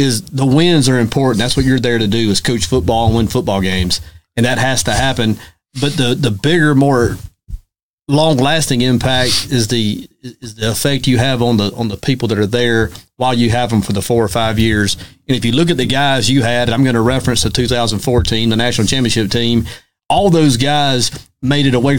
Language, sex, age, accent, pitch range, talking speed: English, male, 40-59, American, 115-130 Hz, 225 wpm